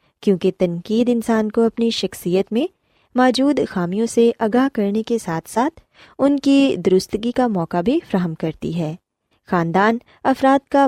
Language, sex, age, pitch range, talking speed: Urdu, female, 20-39, 180-255 Hz, 150 wpm